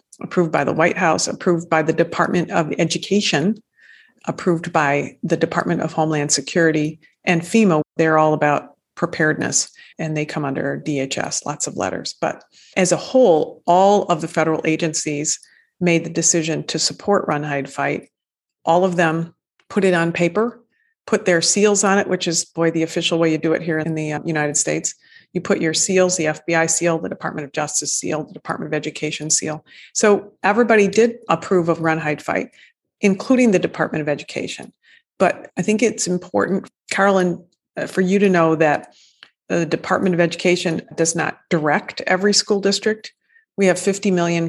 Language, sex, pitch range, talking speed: English, female, 160-195 Hz, 175 wpm